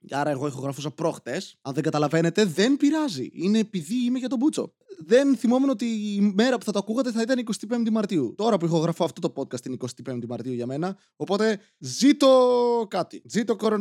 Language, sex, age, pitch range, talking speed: Greek, male, 20-39, 155-210 Hz, 195 wpm